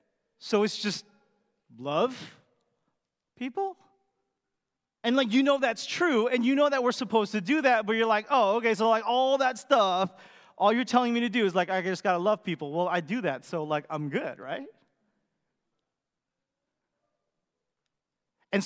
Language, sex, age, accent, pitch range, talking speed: English, male, 30-49, American, 185-235 Hz, 175 wpm